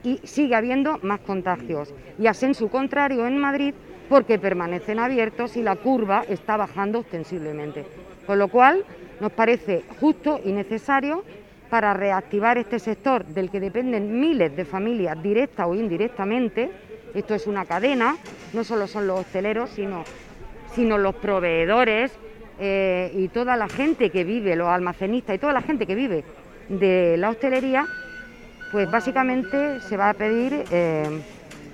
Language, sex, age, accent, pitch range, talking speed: Spanish, female, 40-59, Spanish, 190-245 Hz, 150 wpm